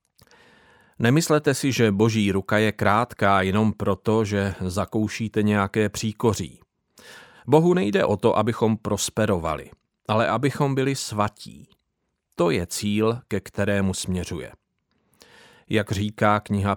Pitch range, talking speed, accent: 100-120 Hz, 115 wpm, native